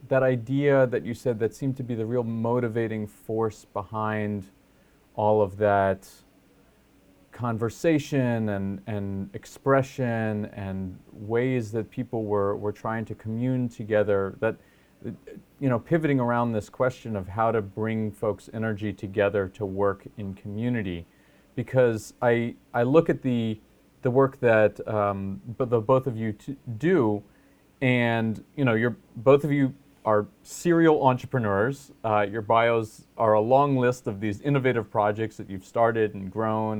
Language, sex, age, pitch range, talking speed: English, male, 30-49, 105-130 Hz, 150 wpm